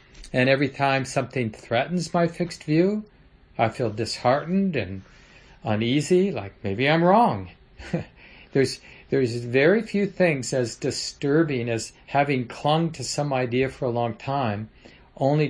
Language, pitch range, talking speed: English, 115-145 Hz, 135 wpm